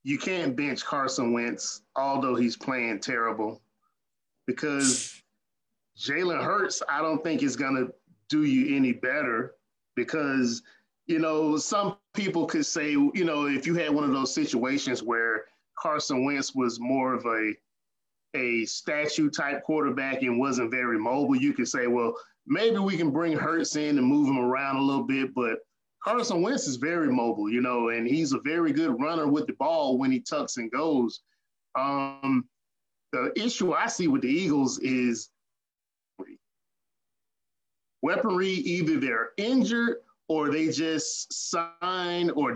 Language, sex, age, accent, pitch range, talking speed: English, male, 30-49, American, 130-200 Hz, 155 wpm